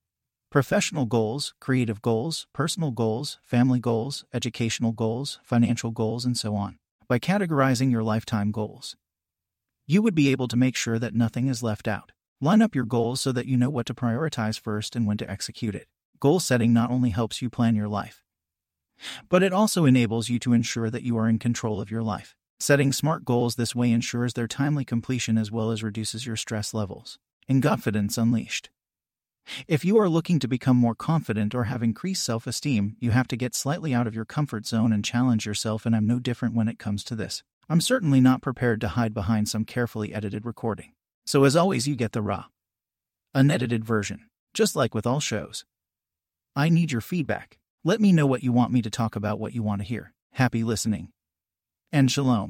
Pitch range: 110-130 Hz